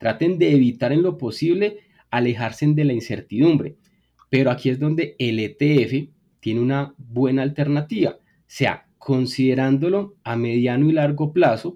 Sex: male